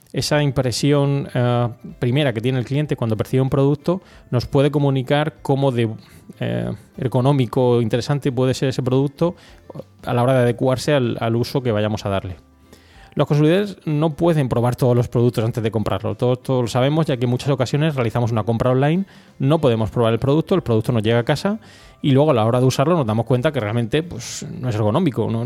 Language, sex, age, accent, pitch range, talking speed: Spanish, male, 20-39, Spanish, 115-145 Hz, 210 wpm